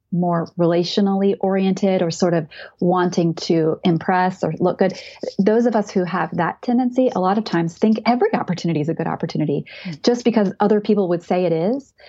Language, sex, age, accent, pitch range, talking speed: English, female, 30-49, American, 180-230 Hz, 190 wpm